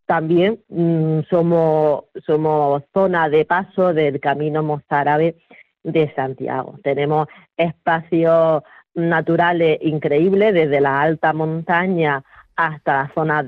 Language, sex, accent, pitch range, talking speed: Spanish, female, Spanish, 150-180 Hz, 100 wpm